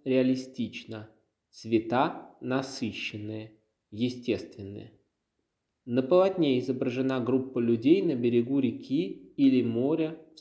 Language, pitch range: Russian, 115-140 Hz